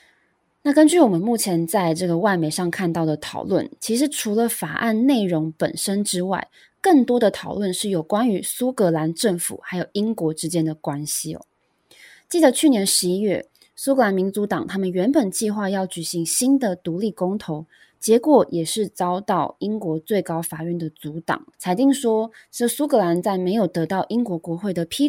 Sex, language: female, Chinese